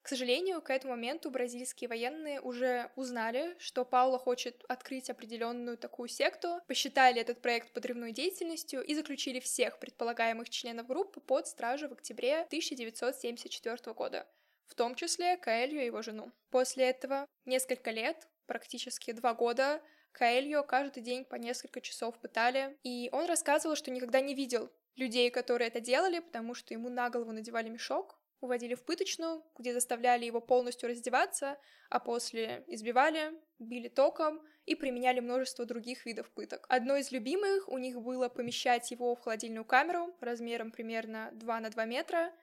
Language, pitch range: Russian, 240-285 Hz